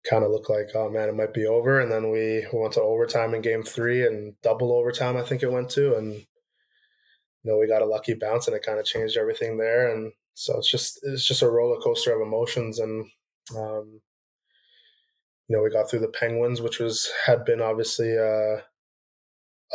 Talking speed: 205 wpm